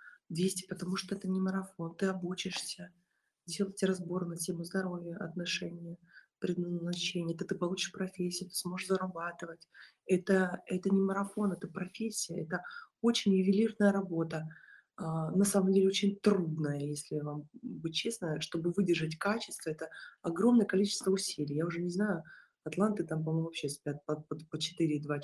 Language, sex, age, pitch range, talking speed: Russian, female, 20-39, 170-200 Hz, 145 wpm